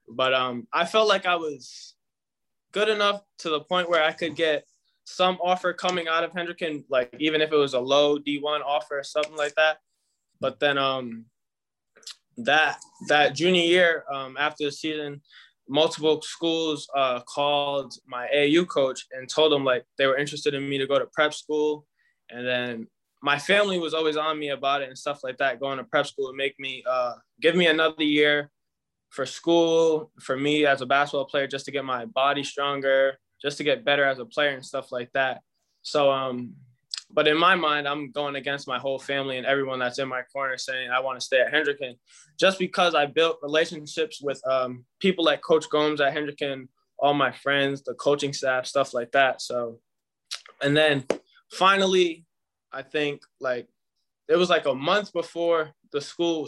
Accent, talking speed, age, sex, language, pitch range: American, 190 wpm, 20-39, male, English, 135-155 Hz